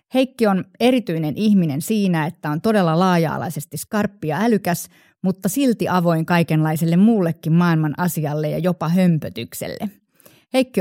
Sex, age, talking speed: female, 30-49, 130 wpm